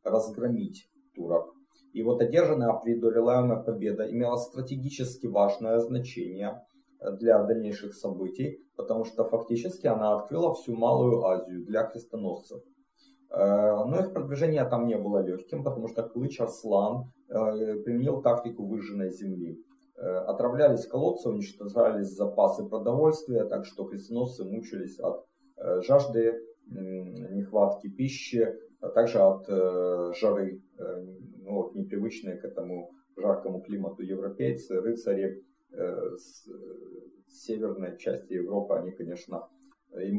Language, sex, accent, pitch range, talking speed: Russian, male, native, 100-140 Hz, 105 wpm